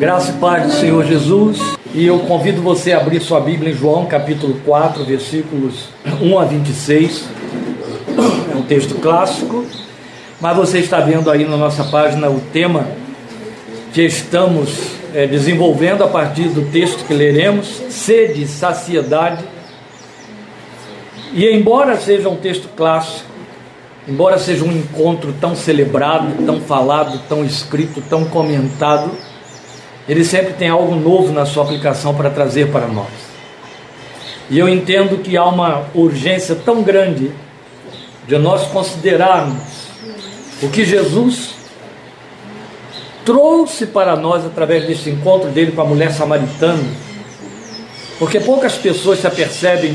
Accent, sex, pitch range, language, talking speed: Brazilian, male, 145-180 Hz, Portuguese, 130 wpm